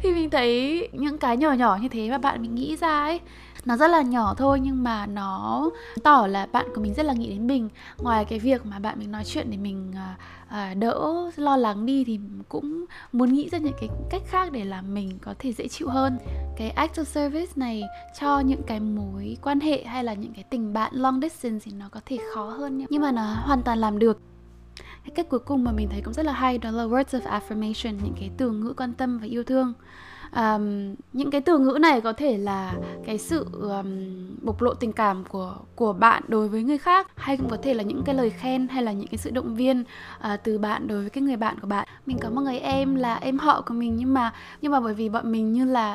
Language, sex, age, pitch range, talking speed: Vietnamese, female, 10-29, 215-275 Hz, 245 wpm